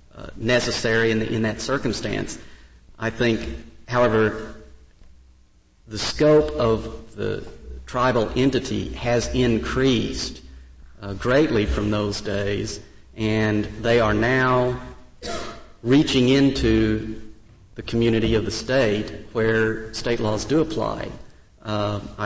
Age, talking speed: 50-69, 105 wpm